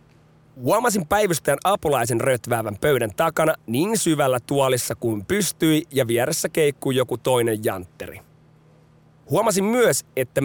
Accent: native